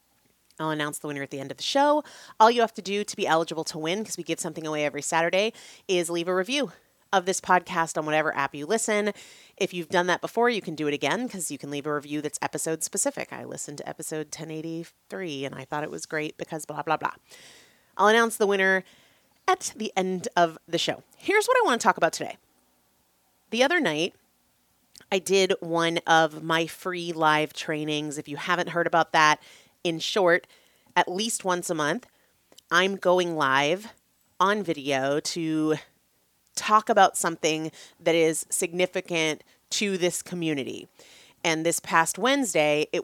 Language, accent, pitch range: English, American, 150-190 Hz